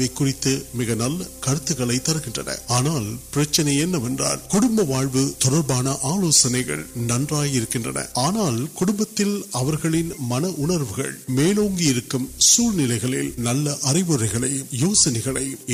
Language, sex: Urdu, male